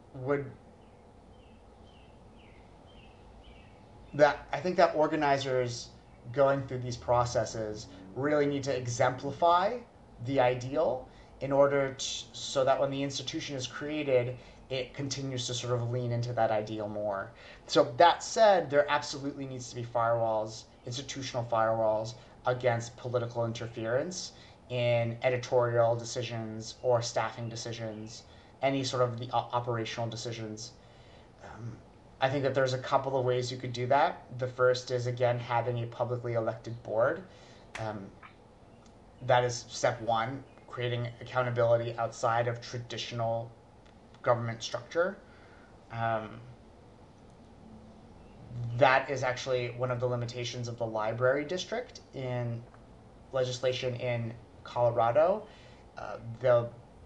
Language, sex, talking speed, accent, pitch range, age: English, male, 120 wpm, American, 115-130 Hz, 30-49